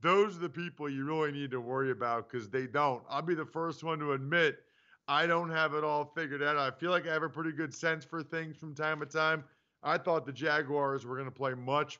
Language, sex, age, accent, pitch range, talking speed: English, male, 40-59, American, 135-170 Hz, 255 wpm